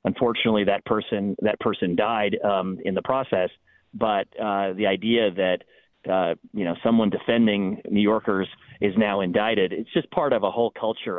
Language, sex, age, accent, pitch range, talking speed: English, male, 40-59, American, 100-115 Hz, 170 wpm